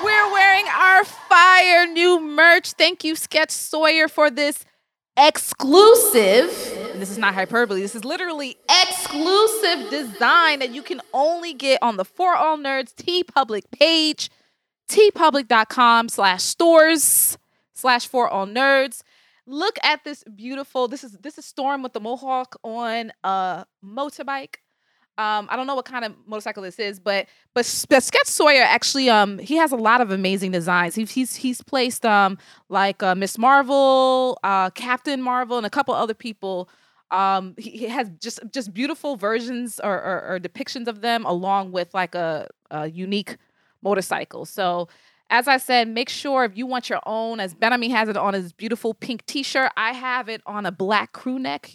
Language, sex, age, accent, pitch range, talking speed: English, female, 20-39, American, 210-295 Hz, 170 wpm